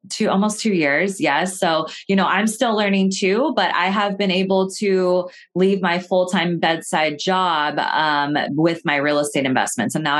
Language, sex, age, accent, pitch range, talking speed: English, female, 20-39, American, 150-190 Hz, 190 wpm